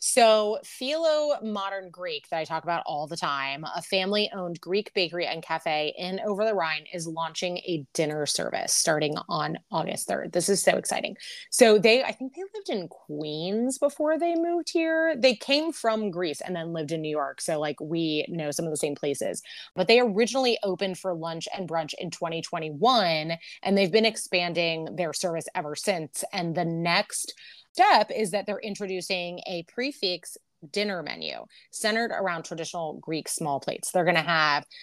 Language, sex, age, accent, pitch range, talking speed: English, female, 20-39, American, 165-215 Hz, 180 wpm